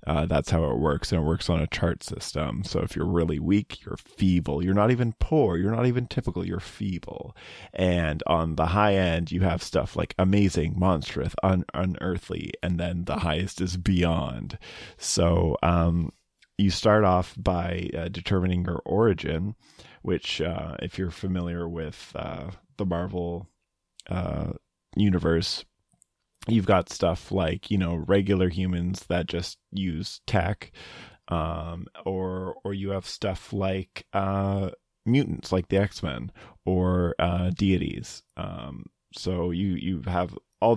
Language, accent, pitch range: English, American, 85-100 Hz